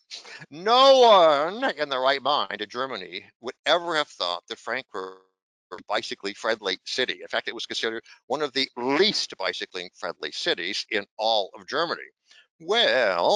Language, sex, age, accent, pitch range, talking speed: English, male, 60-79, American, 135-210 Hz, 155 wpm